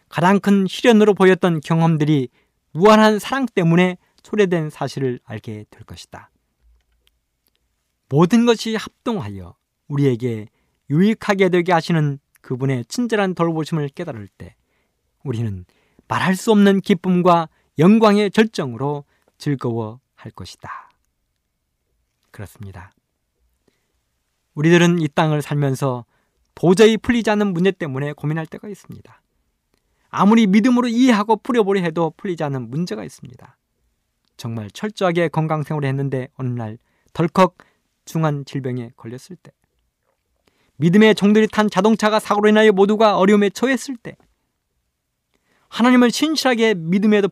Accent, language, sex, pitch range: native, Korean, male, 130-205 Hz